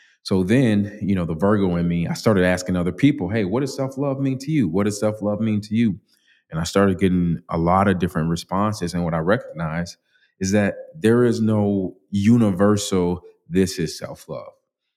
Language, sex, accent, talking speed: English, male, American, 195 wpm